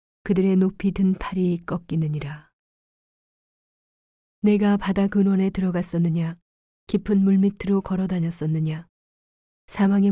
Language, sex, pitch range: Korean, female, 170-190 Hz